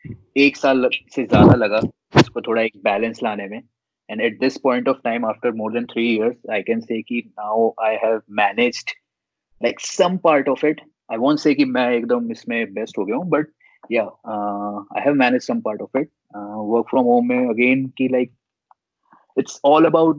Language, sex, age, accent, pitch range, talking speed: Hindi, male, 20-39, native, 110-130 Hz, 85 wpm